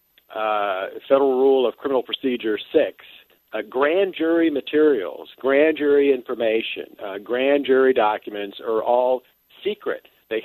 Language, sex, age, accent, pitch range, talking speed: English, male, 50-69, American, 120-205 Hz, 120 wpm